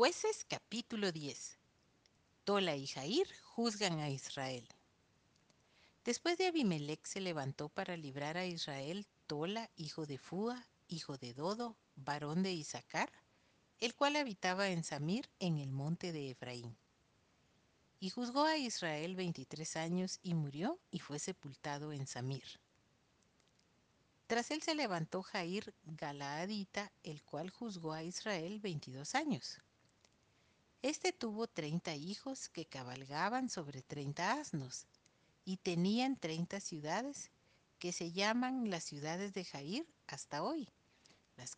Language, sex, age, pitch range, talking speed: Spanish, female, 50-69, 145-215 Hz, 125 wpm